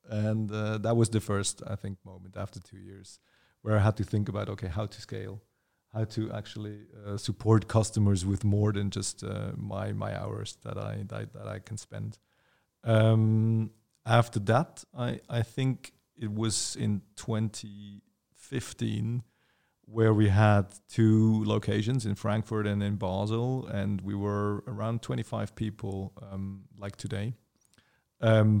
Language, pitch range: English, 100-110 Hz